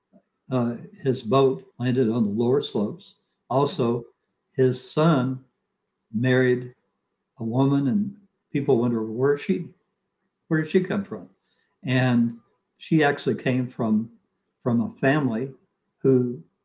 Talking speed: 120 wpm